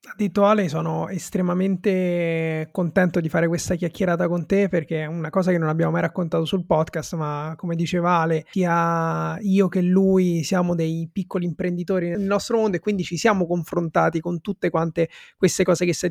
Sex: male